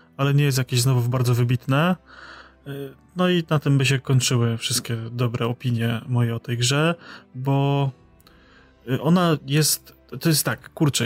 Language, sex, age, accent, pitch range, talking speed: Polish, male, 20-39, native, 120-135 Hz, 150 wpm